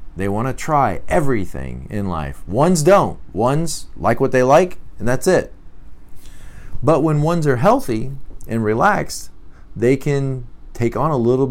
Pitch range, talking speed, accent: 90-130 Hz, 155 wpm, American